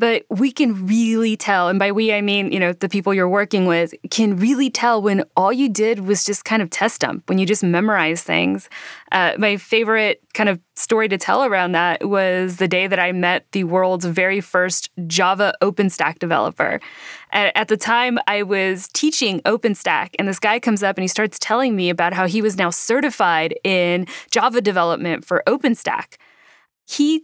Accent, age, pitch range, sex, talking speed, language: American, 20-39, 185-225 Hz, female, 190 wpm, English